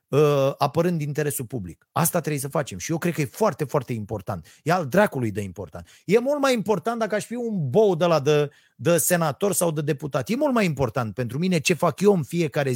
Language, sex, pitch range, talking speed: Romanian, male, 120-175 Hz, 225 wpm